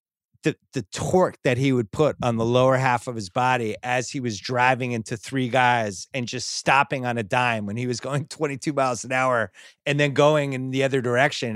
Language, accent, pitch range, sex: English, American, 115-145 Hz, male